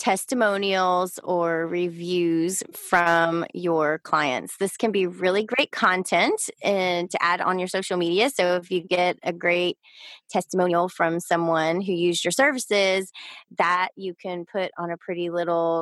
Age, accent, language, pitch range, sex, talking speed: 20-39, American, English, 175-215 Hz, female, 150 wpm